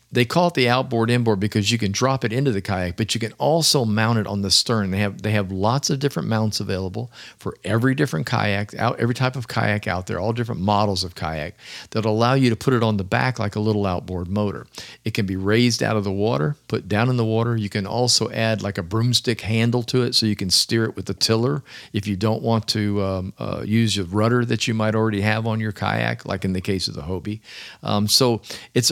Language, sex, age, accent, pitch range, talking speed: English, male, 50-69, American, 100-120 Hz, 250 wpm